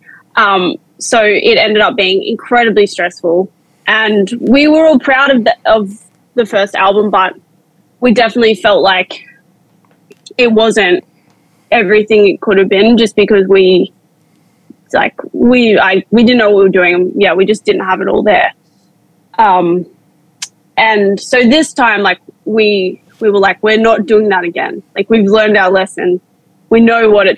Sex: female